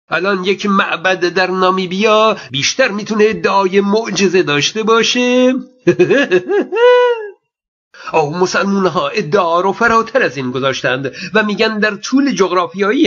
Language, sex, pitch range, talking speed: Persian, male, 180-225 Hz, 115 wpm